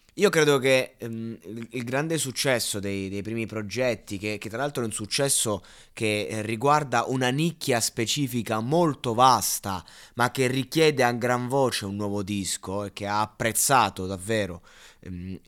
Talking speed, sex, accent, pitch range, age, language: 155 wpm, male, native, 105-130 Hz, 20-39, Italian